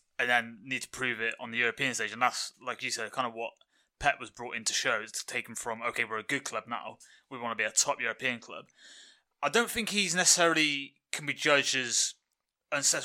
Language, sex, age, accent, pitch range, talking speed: English, male, 20-39, British, 115-145 Hz, 230 wpm